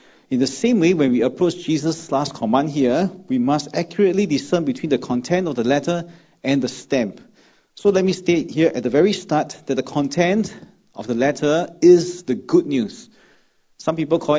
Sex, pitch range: male, 130-180 Hz